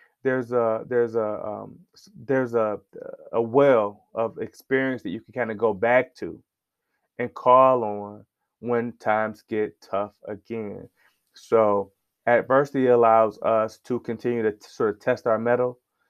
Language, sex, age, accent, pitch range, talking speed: English, male, 20-39, American, 110-130 Hz, 150 wpm